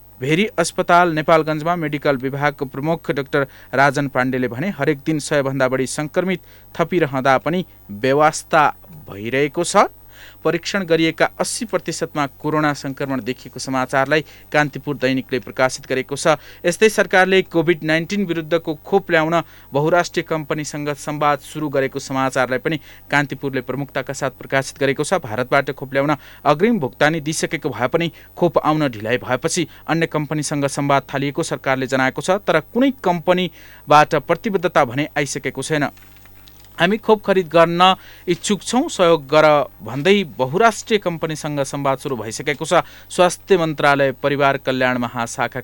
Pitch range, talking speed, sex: 130-170 Hz, 110 wpm, male